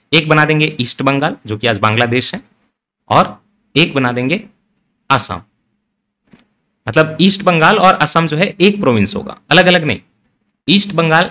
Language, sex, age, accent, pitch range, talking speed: Hindi, male, 30-49, native, 120-160 Hz, 160 wpm